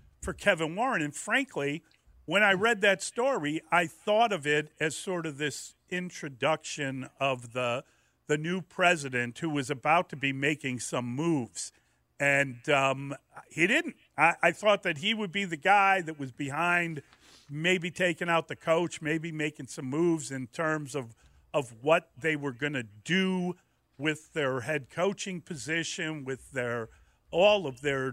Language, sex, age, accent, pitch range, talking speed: English, male, 50-69, American, 140-185 Hz, 160 wpm